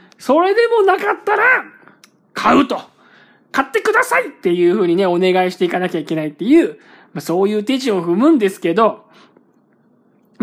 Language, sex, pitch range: Japanese, male, 200-265 Hz